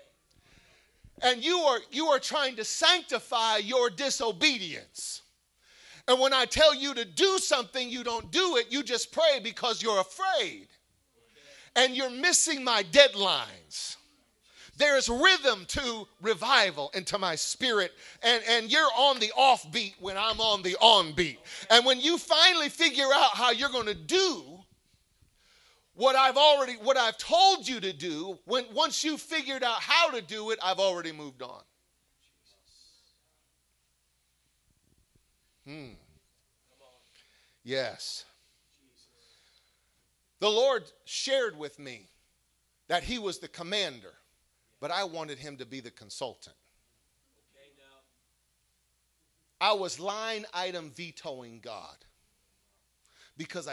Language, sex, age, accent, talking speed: English, male, 40-59, American, 125 wpm